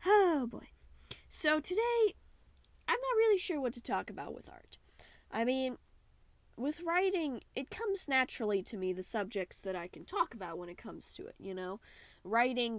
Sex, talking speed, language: female, 180 wpm, English